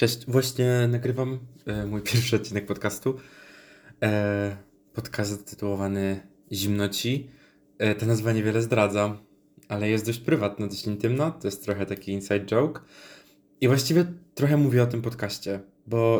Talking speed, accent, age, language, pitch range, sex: 125 wpm, native, 20-39, Polish, 100-120 Hz, male